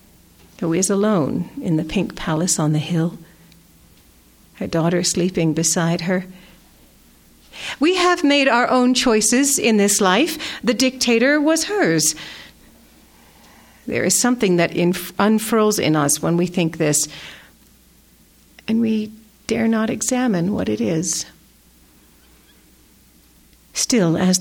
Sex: female